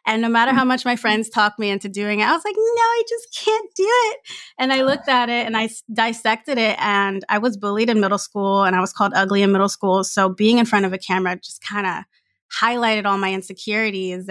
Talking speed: 250 wpm